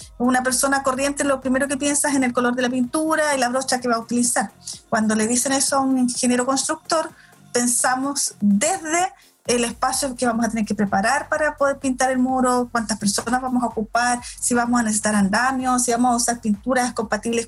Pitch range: 225-270 Hz